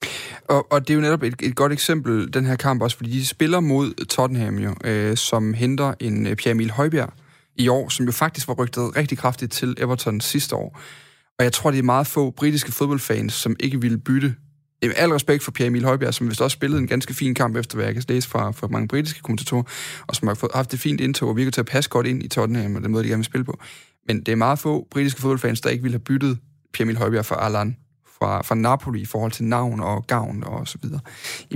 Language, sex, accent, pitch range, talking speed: Danish, male, native, 115-140 Hz, 245 wpm